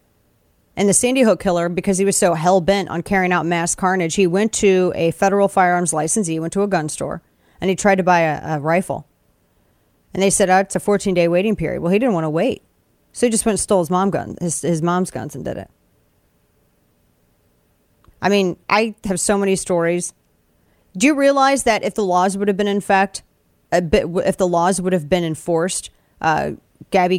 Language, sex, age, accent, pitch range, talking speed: English, female, 30-49, American, 155-195 Hz, 215 wpm